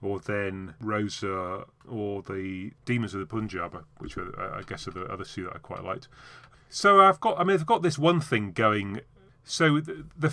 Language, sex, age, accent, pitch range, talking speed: English, male, 30-49, British, 100-130 Hz, 200 wpm